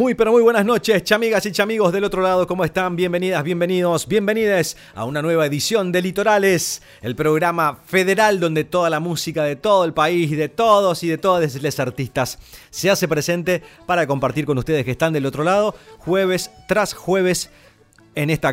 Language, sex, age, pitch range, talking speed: Spanish, male, 30-49, 135-180 Hz, 185 wpm